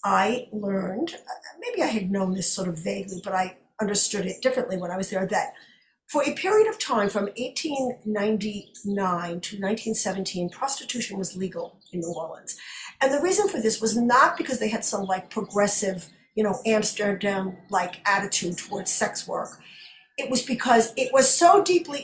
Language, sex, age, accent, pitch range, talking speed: English, female, 50-69, American, 200-255 Hz, 170 wpm